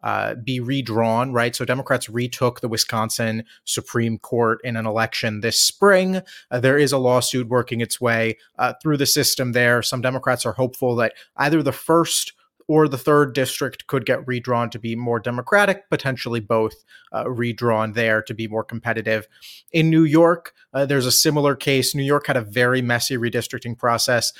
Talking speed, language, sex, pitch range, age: 175 wpm, English, male, 115-135 Hz, 30-49